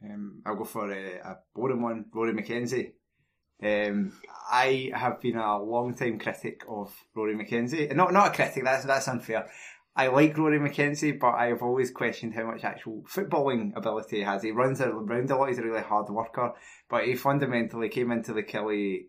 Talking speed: 190 wpm